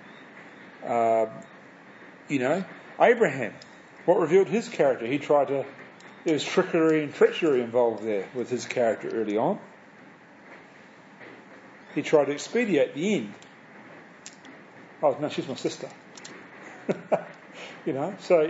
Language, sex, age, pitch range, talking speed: English, male, 40-59, 125-165 Hz, 120 wpm